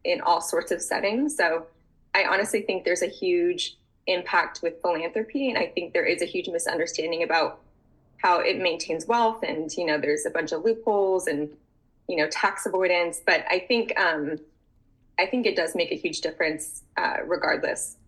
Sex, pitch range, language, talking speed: female, 160-265 Hz, English, 185 wpm